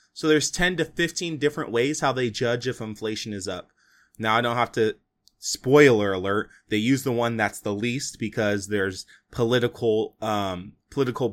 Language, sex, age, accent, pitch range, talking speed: English, male, 20-39, American, 110-150 Hz, 175 wpm